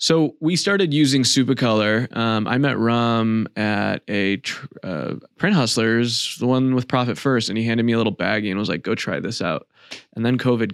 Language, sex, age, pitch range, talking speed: English, male, 20-39, 110-130 Hz, 205 wpm